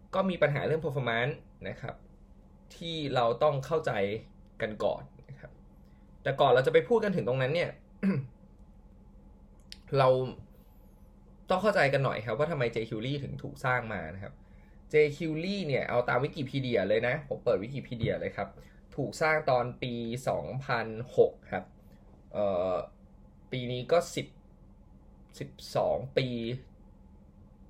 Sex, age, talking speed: male, 20-39, 30 wpm